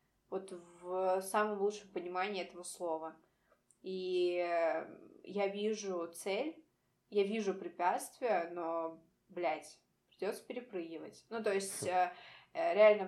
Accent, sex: native, female